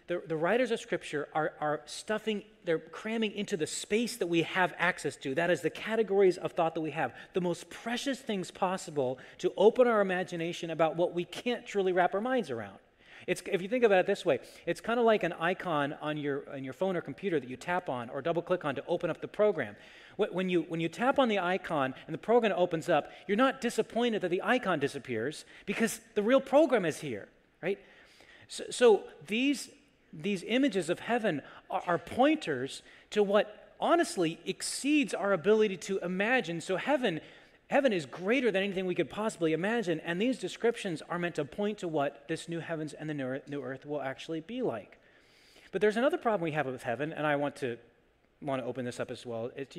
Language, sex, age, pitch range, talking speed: English, male, 30-49, 155-210 Hz, 210 wpm